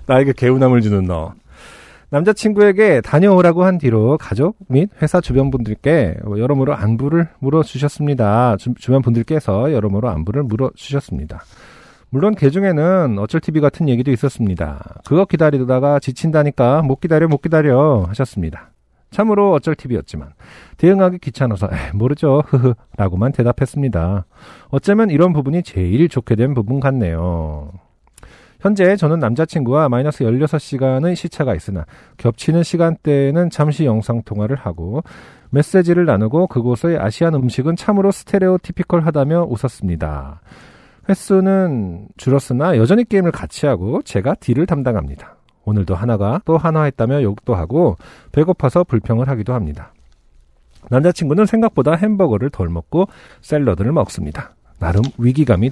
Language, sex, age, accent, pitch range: Korean, male, 40-59, native, 110-165 Hz